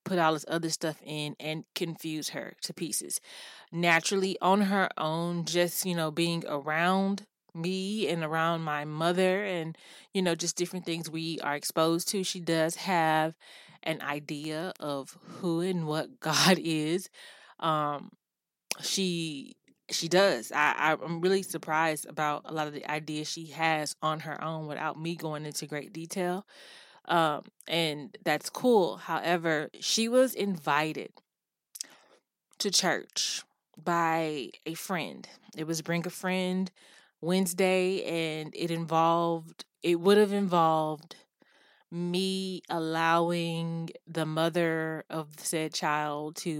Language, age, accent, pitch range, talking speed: English, 20-39, American, 155-180 Hz, 135 wpm